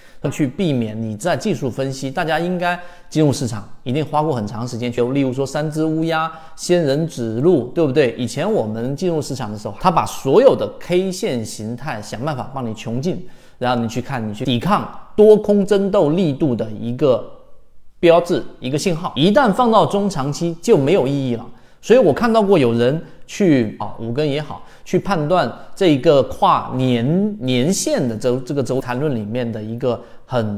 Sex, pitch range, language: male, 120-175 Hz, Chinese